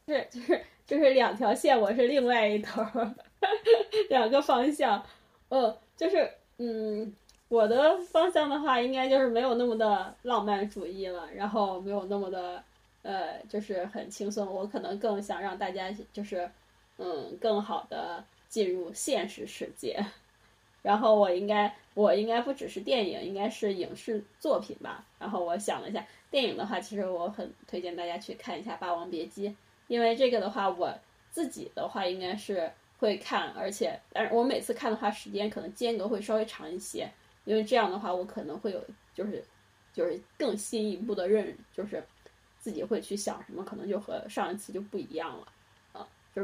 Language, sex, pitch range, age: Chinese, female, 195-240 Hz, 10-29